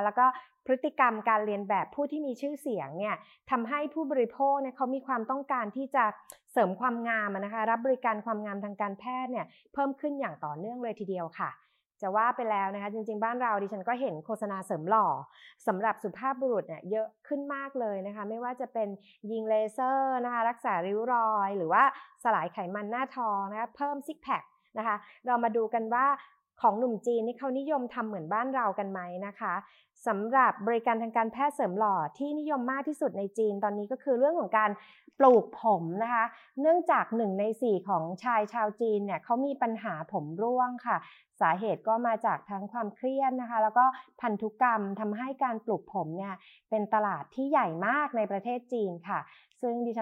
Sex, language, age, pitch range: female, Thai, 30-49, 205-255 Hz